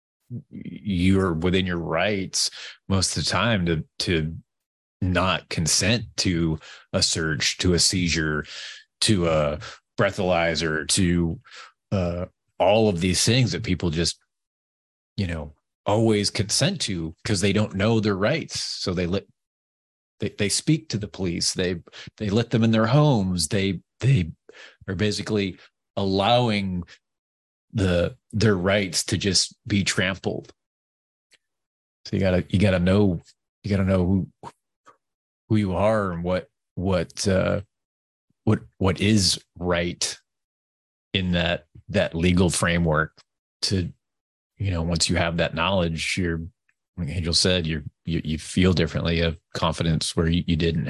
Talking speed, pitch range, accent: 140 wpm, 80-100 Hz, American